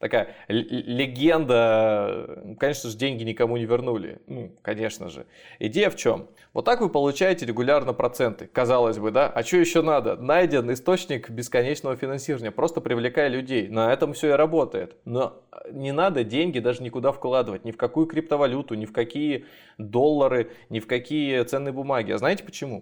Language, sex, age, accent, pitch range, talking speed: Russian, male, 20-39, native, 115-145 Hz, 165 wpm